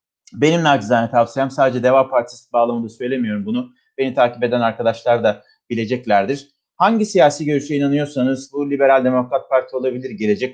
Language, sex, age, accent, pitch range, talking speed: Turkish, male, 40-59, native, 125-155 Hz, 140 wpm